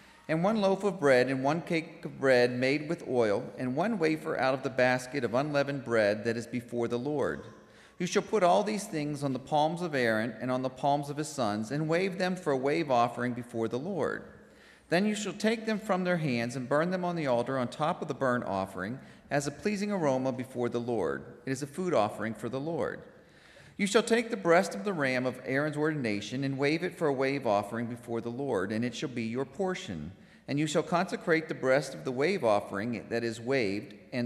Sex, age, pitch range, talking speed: male, 40-59, 120-165 Hz, 230 wpm